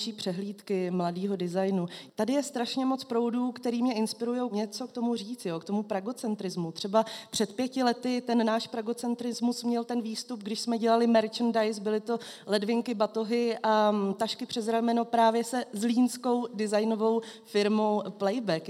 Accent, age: native, 30-49